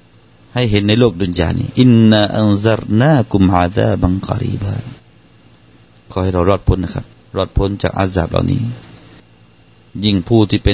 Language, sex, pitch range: Thai, male, 90-115 Hz